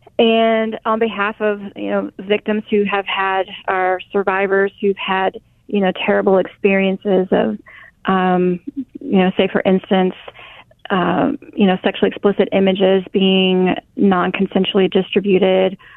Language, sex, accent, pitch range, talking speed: English, female, American, 180-200 Hz, 130 wpm